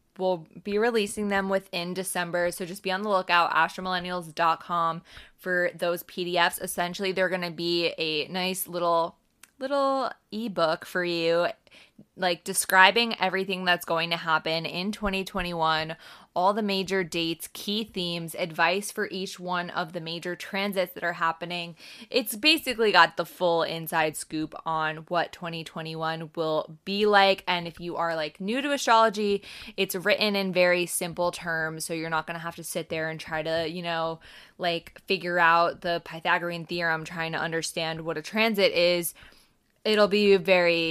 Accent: American